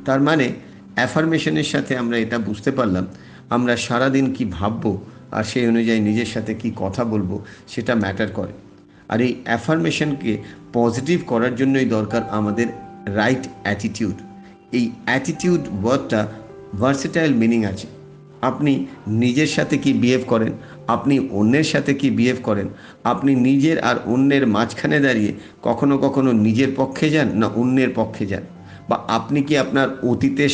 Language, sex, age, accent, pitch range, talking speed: Bengali, male, 50-69, native, 110-140 Hz, 140 wpm